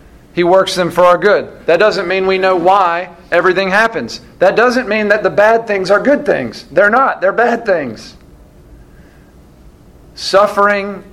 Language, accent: English, American